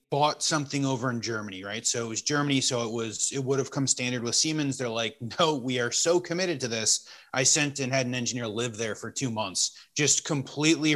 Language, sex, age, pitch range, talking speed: English, male, 30-49, 120-145 Hz, 230 wpm